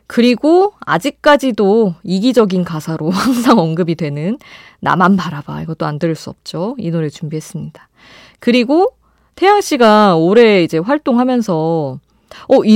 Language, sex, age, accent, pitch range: Korean, female, 20-39, native, 160-240 Hz